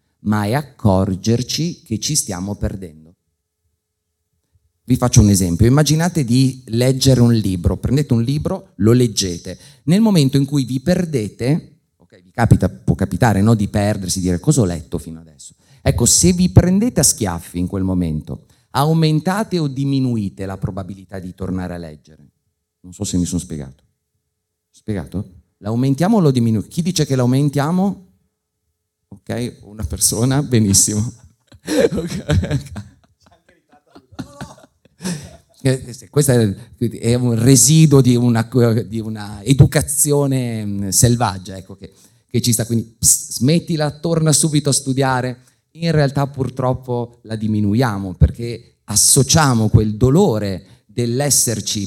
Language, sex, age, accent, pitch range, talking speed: Italian, male, 30-49, native, 95-135 Hz, 125 wpm